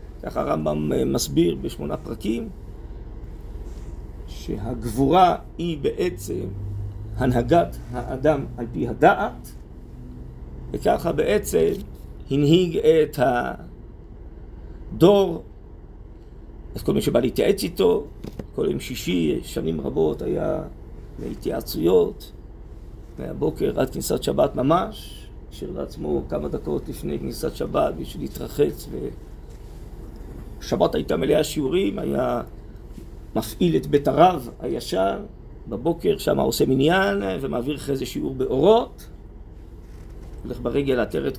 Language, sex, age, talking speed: Hebrew, male, 50-69, 95 wpm